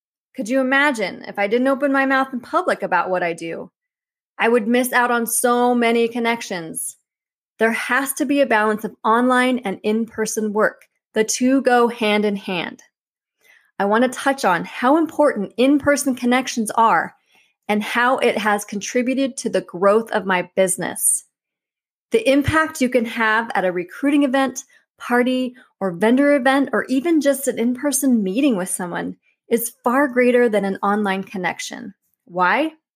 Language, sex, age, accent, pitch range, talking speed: English, female, 30-49, American, 205-260 Hz, 165 wpm